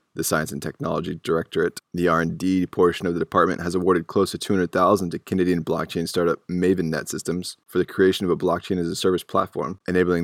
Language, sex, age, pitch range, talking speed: English, male, 20-39, 85-90 Hz, 175 wpm